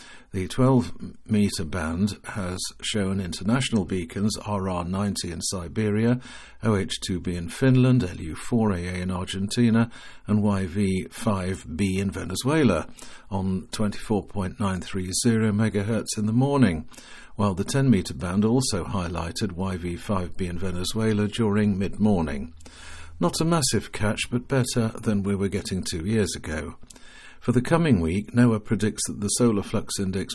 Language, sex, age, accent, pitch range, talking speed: English, male, 50-69, British, 95-110 Hz, 120 wpm